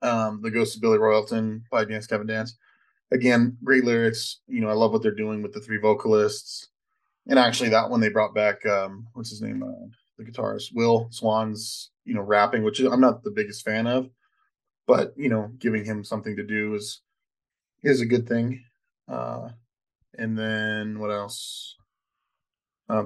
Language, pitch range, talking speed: English, 105-120 Hz, 180 wpm